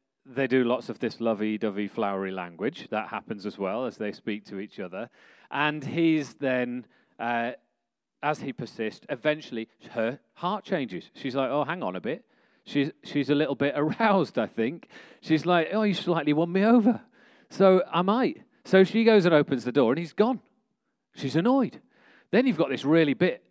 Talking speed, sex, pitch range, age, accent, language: 185 wpm, male, 125-170 Hz, 40-59, British, English